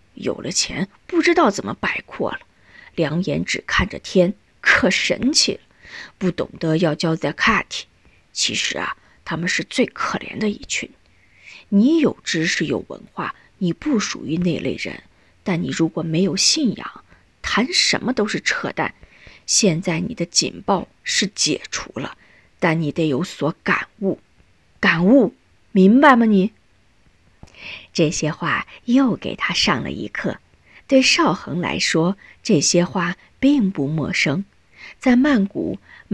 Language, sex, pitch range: Chinese, female, 165-230 Hz